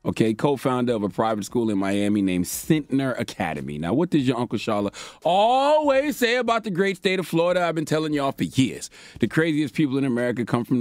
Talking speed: 210 wpm